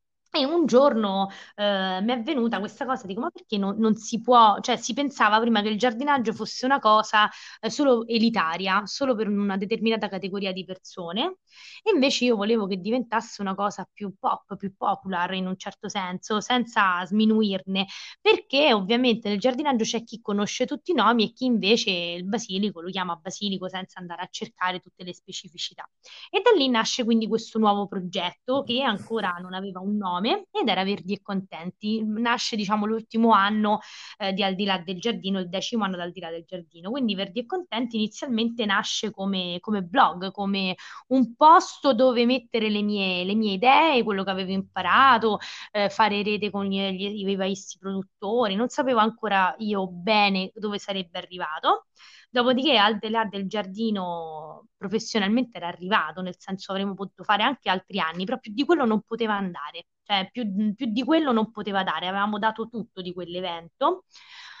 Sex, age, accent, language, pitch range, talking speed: female, 20-39, native, Italian, 190-235 Hz, 180 wpm